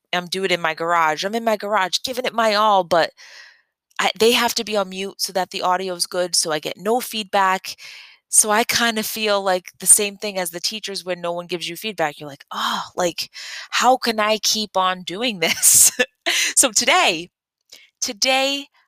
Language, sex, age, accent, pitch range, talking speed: English, female, 20-39, American, 175-235 Hz, 205 wpm